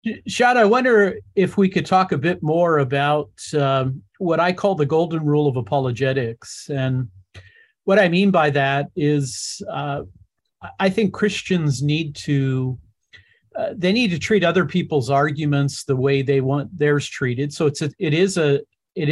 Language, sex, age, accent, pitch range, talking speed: English, male, 50-69, American, 140-185 Hz, 170 wpm